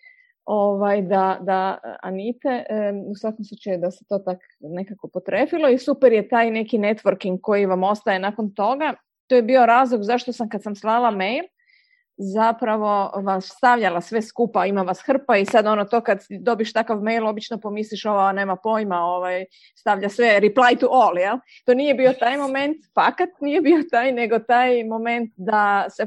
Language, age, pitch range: Croatian, 30-49, 190-245 Hz